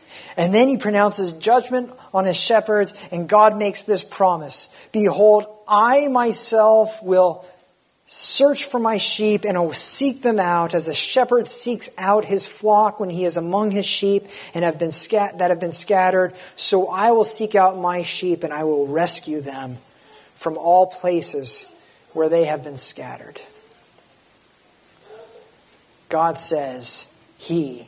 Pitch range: 160-205 Hz